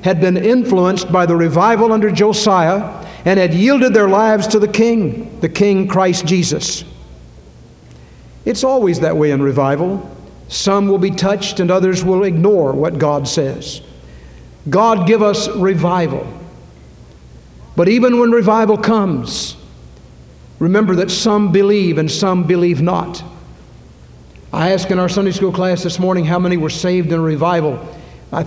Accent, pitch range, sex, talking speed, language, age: American, 145-200 Hz, male, 150 wpm, English, 60-79